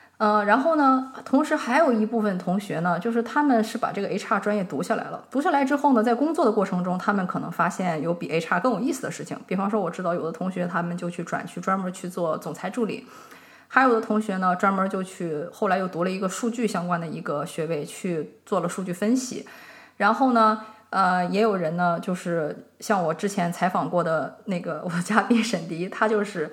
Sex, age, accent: female, 20-39, Chinese